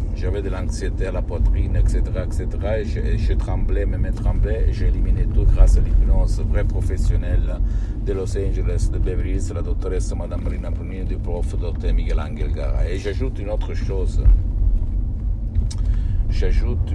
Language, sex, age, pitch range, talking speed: Italian, male, 60-79, 85-100 Hz, 165 wpm